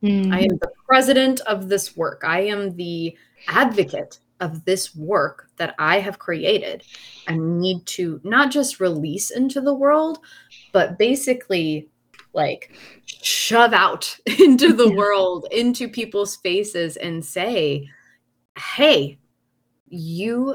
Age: 20-39